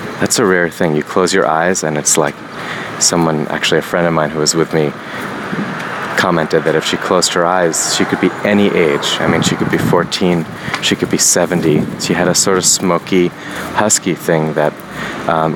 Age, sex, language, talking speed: 30-49, male, English, 205 wpm